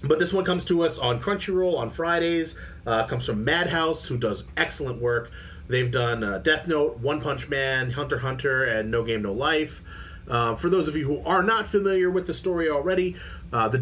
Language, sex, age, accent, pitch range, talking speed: English, male, 30-49, American, 120-170 Hz, 210 wpm